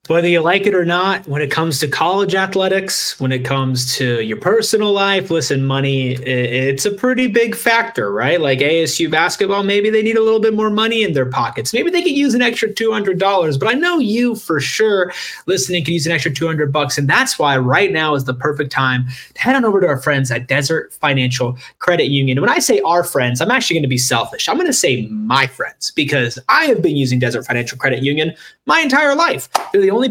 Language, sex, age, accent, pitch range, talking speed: English, male, 30-49, American, 135-205 Hz, 225 wpm